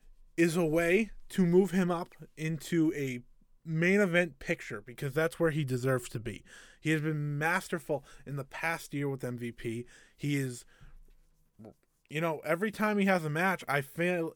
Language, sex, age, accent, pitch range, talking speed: English, male, 20-39, American, 135-170 Hz, 170 wpm